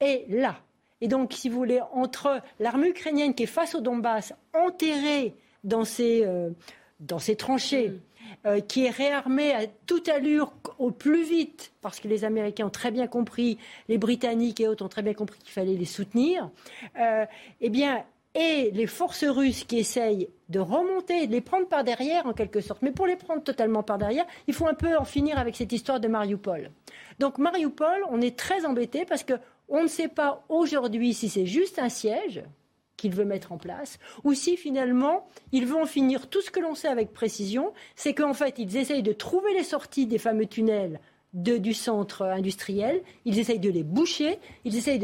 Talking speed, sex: 190 wpm, female